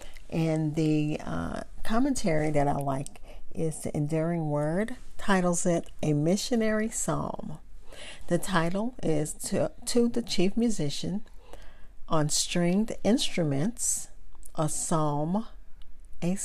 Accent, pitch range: American, 155-215 Hz